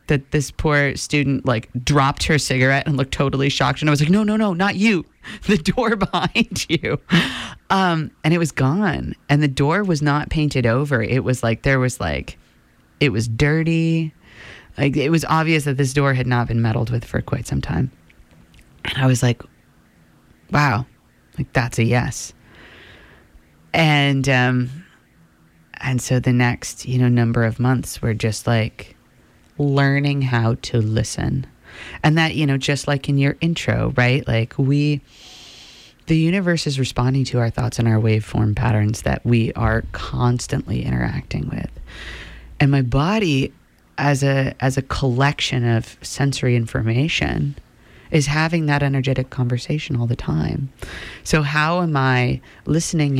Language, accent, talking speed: English, American, 160 wpm